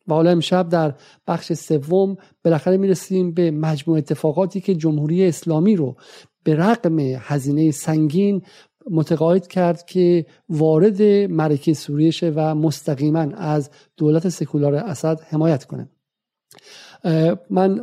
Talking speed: 120 wpm